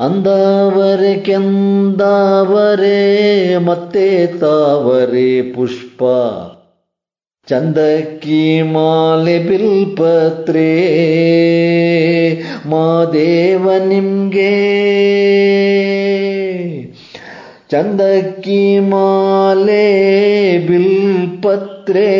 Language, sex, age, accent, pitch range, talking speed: Kannada, male, 30-49, native, 155-195 Hz, 35 wpm